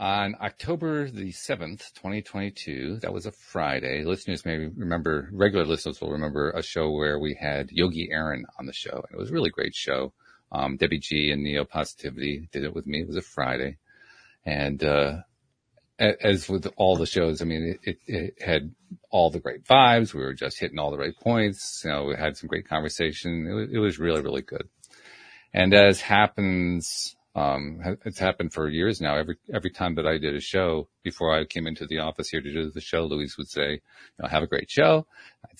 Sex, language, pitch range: male, English, 75-100 Hz